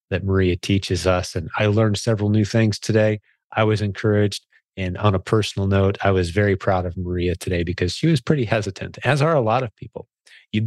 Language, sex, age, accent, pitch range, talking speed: English, male, 30-49, American, 95-115 Hz, 215 wpm